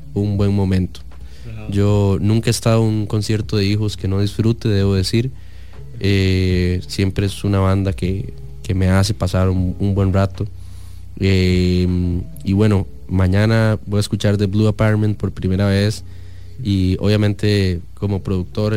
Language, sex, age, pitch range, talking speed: English, male, 20-39, 95-110 Hz, 155 wpm